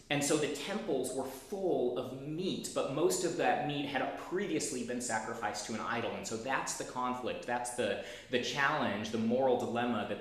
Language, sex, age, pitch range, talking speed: English, male, 30-49, 110-135 Hz, 195 wpm